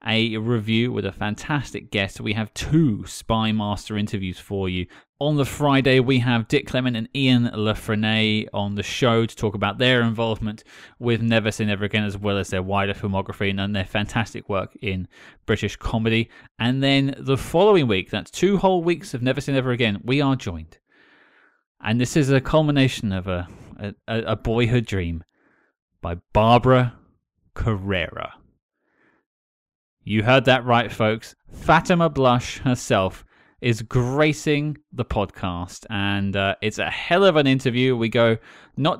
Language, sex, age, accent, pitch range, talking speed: English, male, 20-39, British, 105-145 Hz, 160 wpm